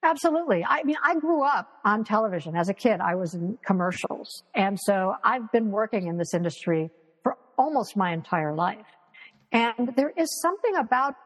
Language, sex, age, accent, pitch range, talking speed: English, female, 50-69, American, 185-275 Hz, 175 wpm